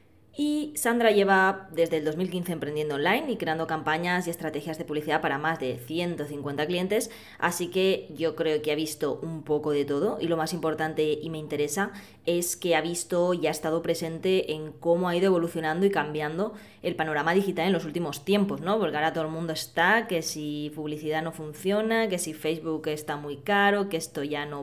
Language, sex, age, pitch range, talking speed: Spanish, female, 20-39, 155-195 Hz, 200 wpm